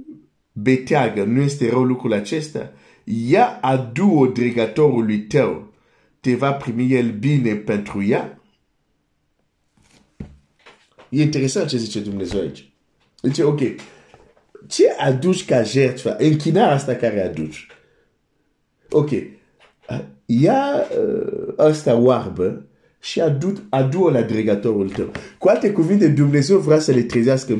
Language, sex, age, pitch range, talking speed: Romanian, male, 50-69, 115-160 Hz, 110 wpm